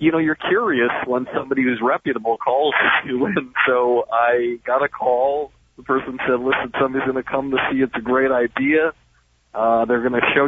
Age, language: 40-59, English